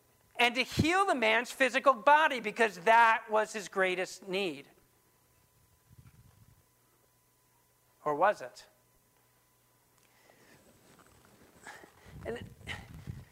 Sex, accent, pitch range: male, American, 205-280 Hz